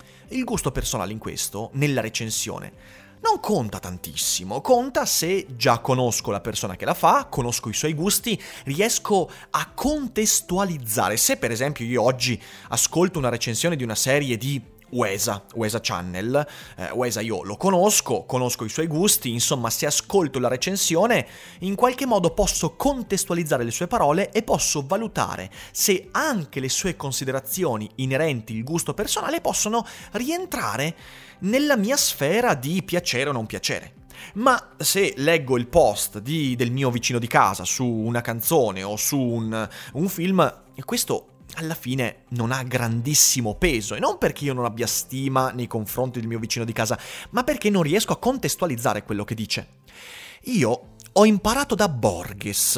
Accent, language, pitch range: native, Italian, 115-185 Hz